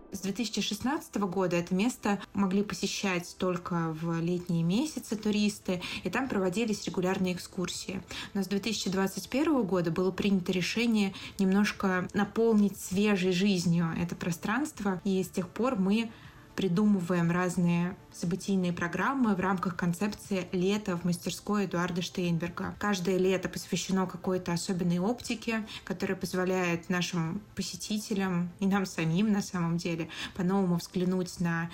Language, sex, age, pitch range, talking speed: Russian, female, 20-39, 180-200 Hz, 125 wpm